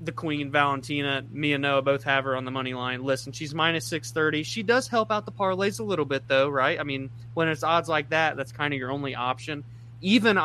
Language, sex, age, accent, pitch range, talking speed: English, male, 20-39, American, 125-165 Hz, 240 wpm